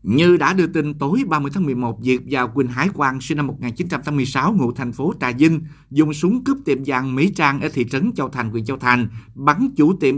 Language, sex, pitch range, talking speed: Vietnamese, male, 130-155 Hz, 230 wpm